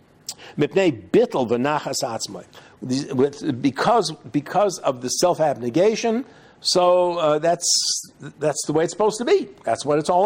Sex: male